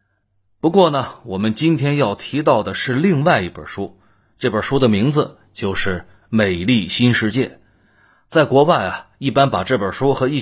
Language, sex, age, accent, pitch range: Chinese, male, 30-49, native, 105-160 Hz